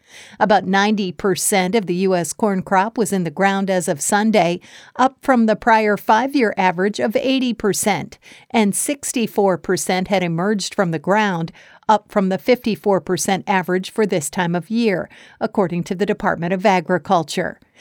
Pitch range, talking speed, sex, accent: 185-225 Hz, 165 wpm, female, American